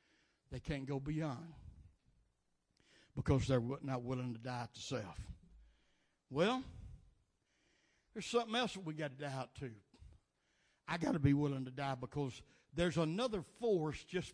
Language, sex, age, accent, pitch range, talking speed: English, male, 60-79, American, 135-180 Hz, 150 wpm